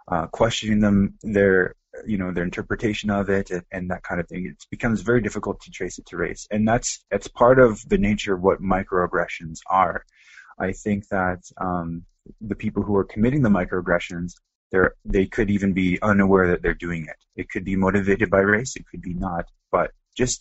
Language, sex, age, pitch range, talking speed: English, male, 20-39, 90-105 Hz, 205 wpm